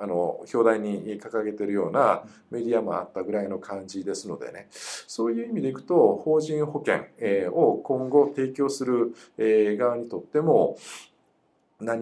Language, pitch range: Japanese, 100-140 Hz